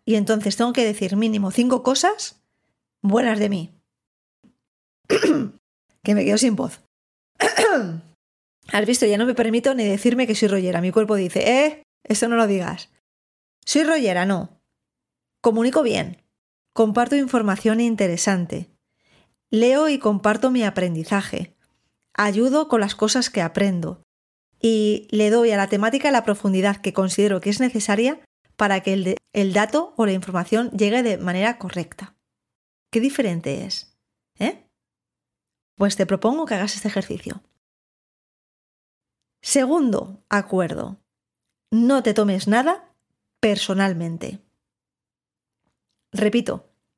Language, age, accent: Spanish, 20-39, Spanish